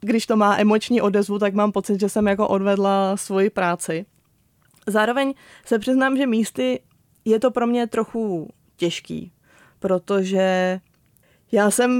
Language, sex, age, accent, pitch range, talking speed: Czech, female, 20-39, native, 190-220 Hz, 140 wpm